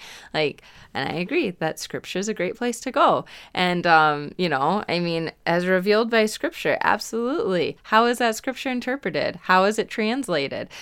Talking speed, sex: 175 wpm, female